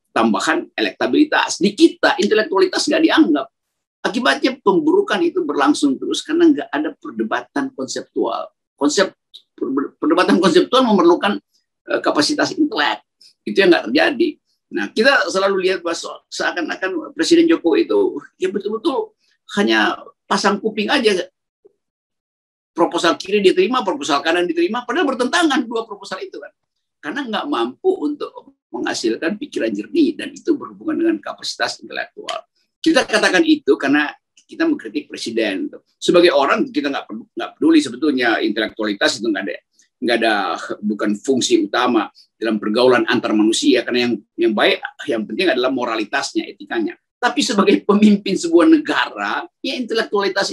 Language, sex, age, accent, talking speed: Indonesian, male, 50-69, native, 130 wpm